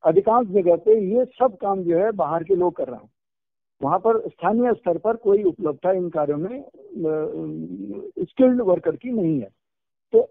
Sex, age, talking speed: male, 60-79, 175 wpm